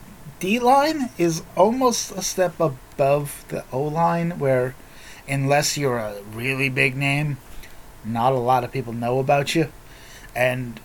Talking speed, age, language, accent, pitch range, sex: 135 wpm, 30-49, English, American, 125-155 Hz, male